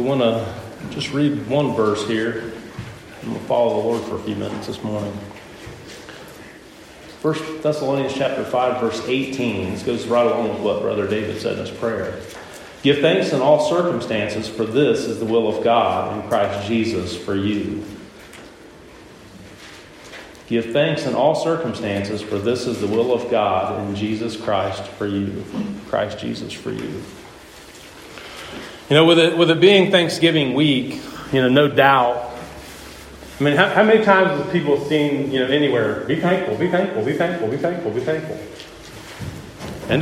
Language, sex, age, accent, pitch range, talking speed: English, male, 40-59, American, 115-185 Hz, 165 wpm